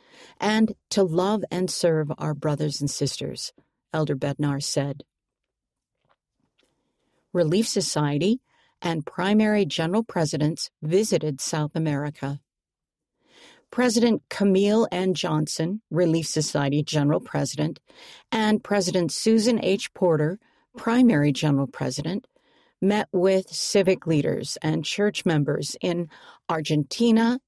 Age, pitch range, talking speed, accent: 50-69, 150-200 Hz, 100 wpm, American